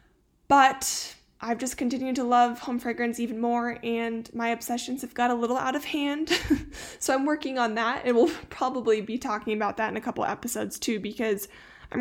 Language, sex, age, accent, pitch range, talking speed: English, female, 10-29, American, 215-250 Hz, 195 wpm